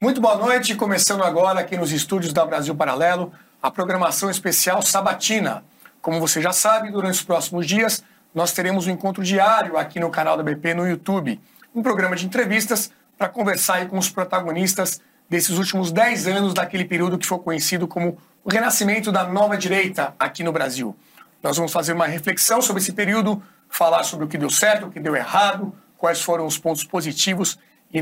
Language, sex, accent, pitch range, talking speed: Portuguese, male, Brazilian, 170-215 Hz, 185 wpm